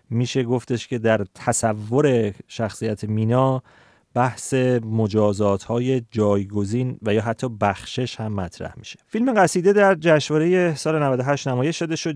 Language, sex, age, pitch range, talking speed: Persian, male, 30-49, 110-140 Hz, 130 wpm